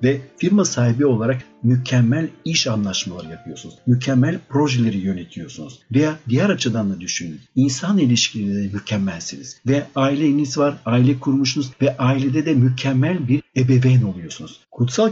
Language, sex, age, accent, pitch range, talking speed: Turkish, male, 60-79, native, 115-145 Hz, 125 wpm